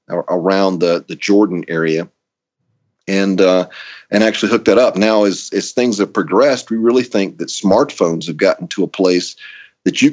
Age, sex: 40-59, male